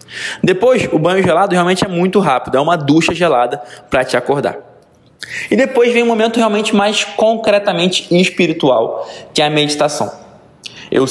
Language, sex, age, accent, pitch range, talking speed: Portuguese, male, 20-39, Brazilian, 140-195 Hz, 155 wpm